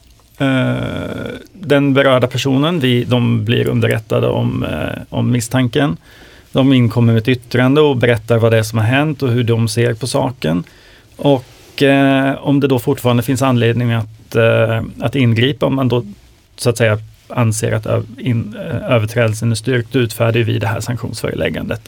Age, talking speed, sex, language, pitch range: 30-49, 140 wpm, male, Swedish, 110-130 Hz